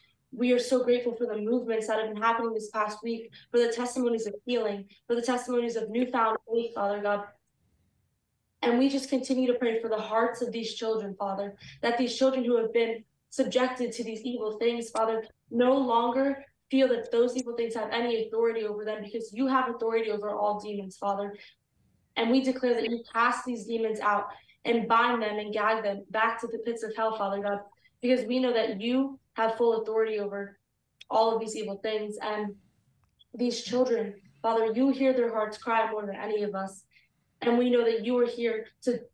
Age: 20-39